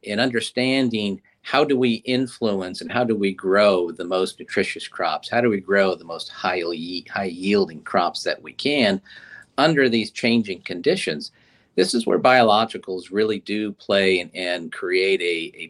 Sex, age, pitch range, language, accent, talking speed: male, 50-69, 95-130 Hz, English, American, 170 wpm